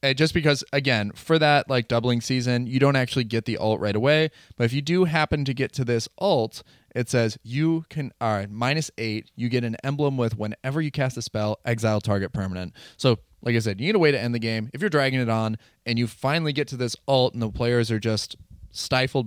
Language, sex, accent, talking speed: English, male, American, 245 wpm